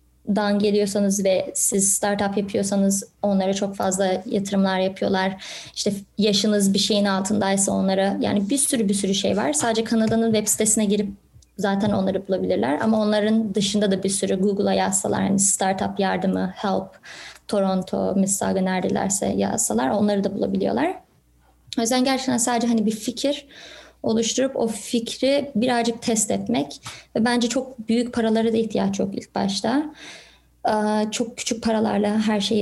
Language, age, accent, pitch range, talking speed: Turkish, 20-39, native, 195-225 Hz, 145 wpm